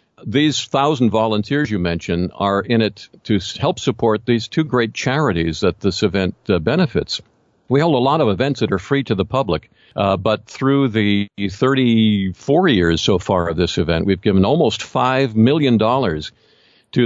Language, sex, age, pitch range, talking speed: English, male, 50-69, 95-130 Hz, 170 wpm